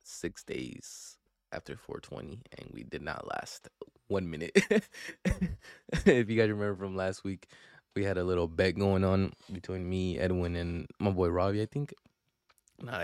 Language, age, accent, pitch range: English, 20-39, American, 90-110 Hz